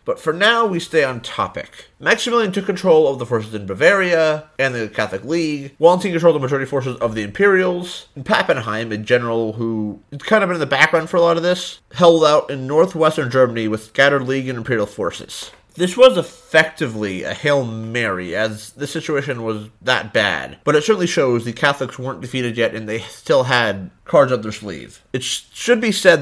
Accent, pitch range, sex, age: American, 115-160 Hz, male, 30-49